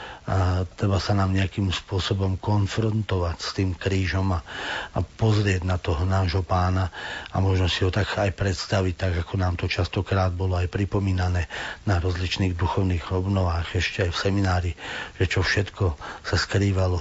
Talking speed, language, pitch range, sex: 160 wpm, Slovak, 90-100 Hz, male